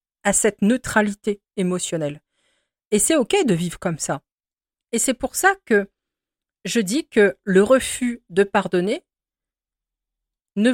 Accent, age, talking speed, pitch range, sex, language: French, 40-59, 135 wpm, 180-230 Hz, female, French